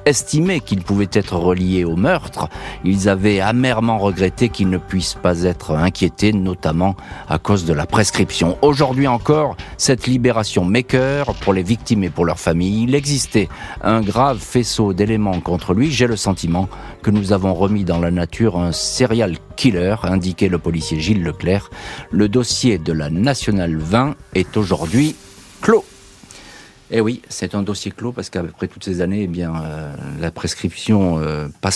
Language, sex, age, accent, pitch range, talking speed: French, male, 50-69, French, 90-115 Hz, 165 wpm